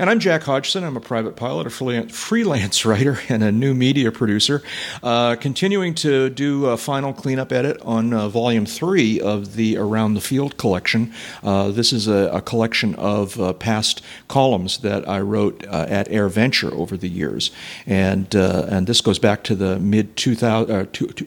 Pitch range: 100-125 Hz